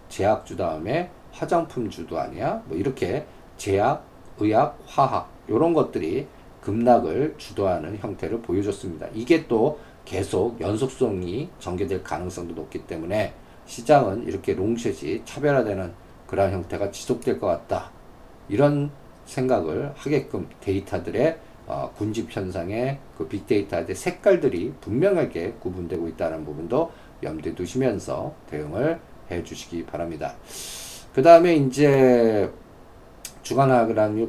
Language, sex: Korean, male